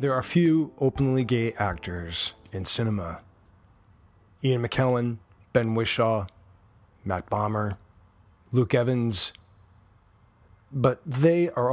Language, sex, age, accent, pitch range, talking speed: English, male, 40-59, American, 95-125 Hz, 100 wpm